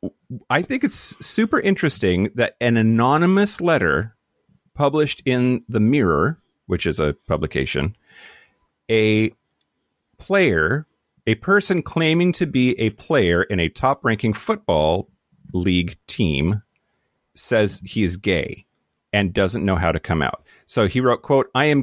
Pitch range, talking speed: 90-120 Hz, 135 wpm